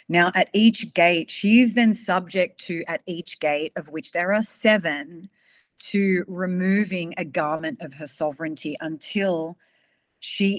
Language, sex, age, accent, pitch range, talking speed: English, female, 30-49, Australian, 165-210 Hz, 145 wpm